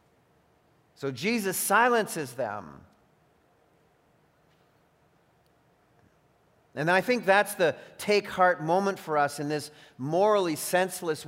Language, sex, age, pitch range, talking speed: English, male, 40-59, 145-190 Hz, 95 wpm